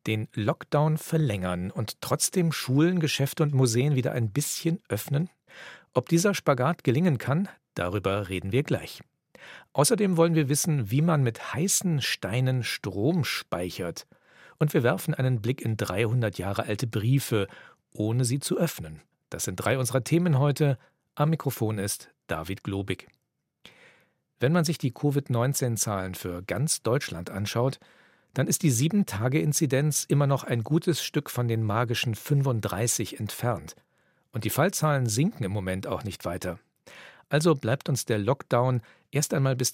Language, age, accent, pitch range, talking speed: German, 40-59, German, 110-150 Hz, 150 wpm